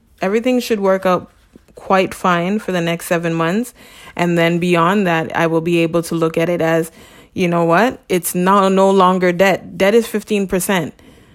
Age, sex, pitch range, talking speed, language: 20-39, female, 175-215 Hz, 190 wpm, English